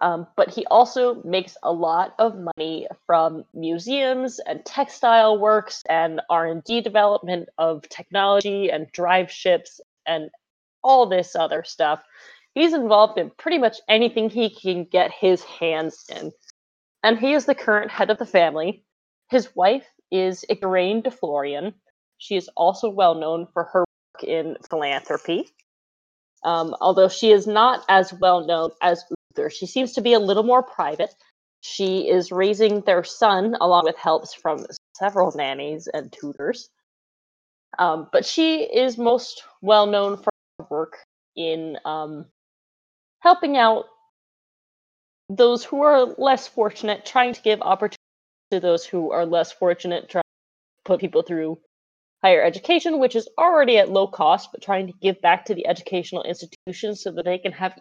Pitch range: 170-240 Hz